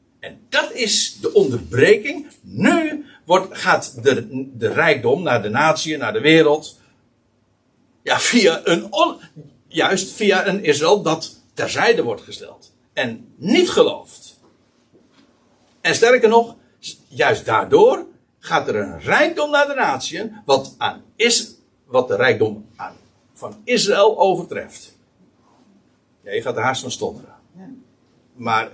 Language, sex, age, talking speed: Dutch, male, 60-79, 130 wpm